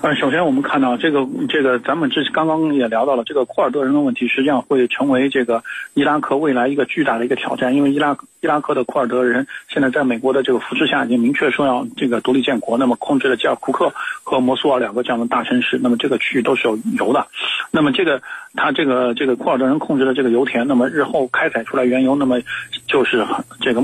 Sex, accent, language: male, native, Chinese